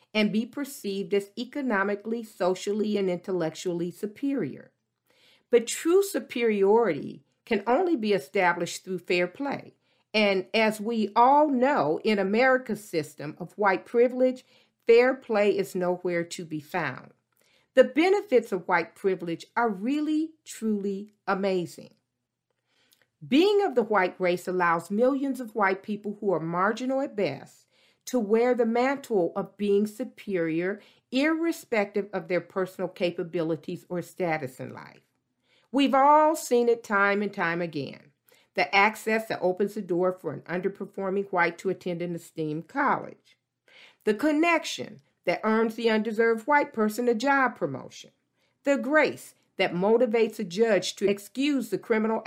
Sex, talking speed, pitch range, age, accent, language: female, 140 wpm, 185-245 Hz, 50-69, American, English